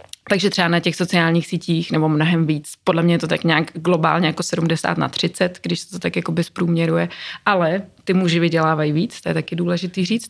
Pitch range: 175-195 Hz